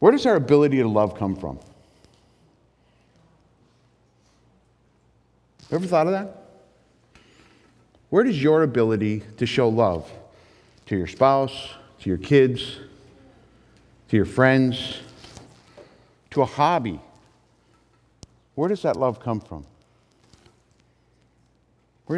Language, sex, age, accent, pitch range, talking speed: English, male, 50-69, American, 110-155 Hz, 105 wpm